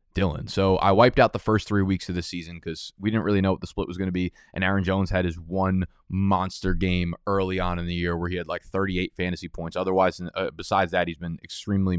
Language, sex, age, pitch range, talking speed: English, male, 20-39, 90-105 Hz, 250 wpm